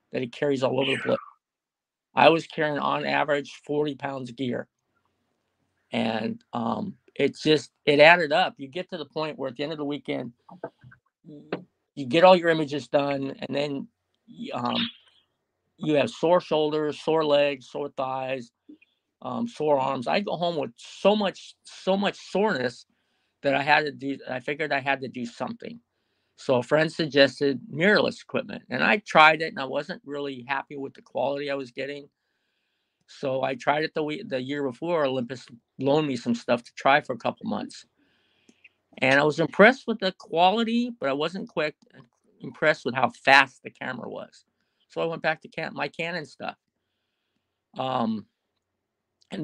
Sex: male